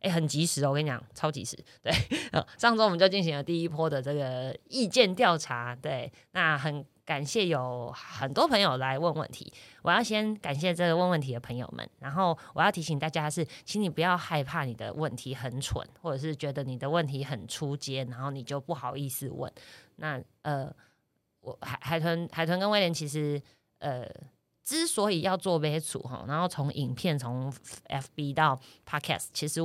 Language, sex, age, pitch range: Chinese, female, 20-39, 135-180 Hz